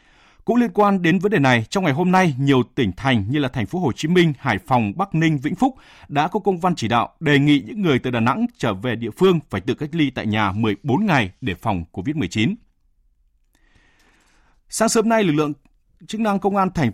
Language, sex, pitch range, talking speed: Vietnamese, male, 115-170 Hz, 230 wpm